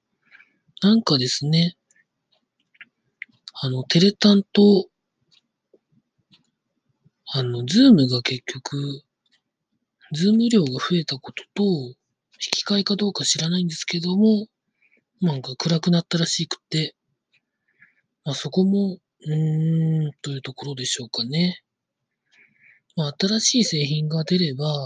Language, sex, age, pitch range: Japanese, male, 40-59, 140-180 Hz